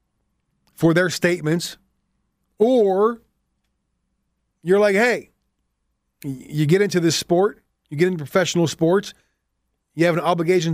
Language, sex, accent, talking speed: English, male, American, 115 wpm